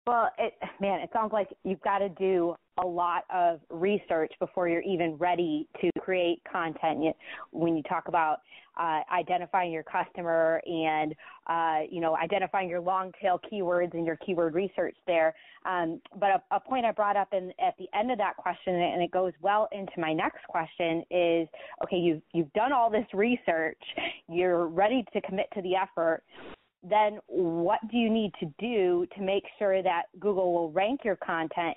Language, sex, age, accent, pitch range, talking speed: English, female, 20-39, American, 170-200 Hz, 185 wpm